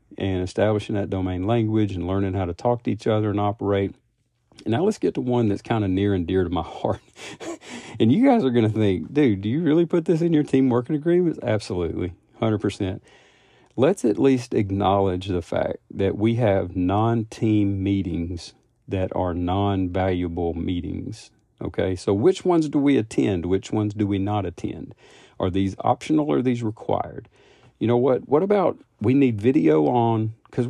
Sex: male